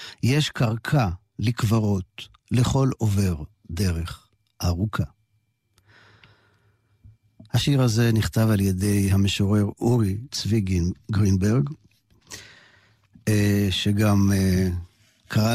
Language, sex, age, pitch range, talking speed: Hebrew, male, 50-69, 105-130 Hz, 70 wpm